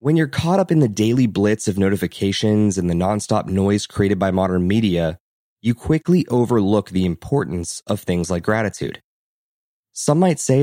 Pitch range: 100-135 Hz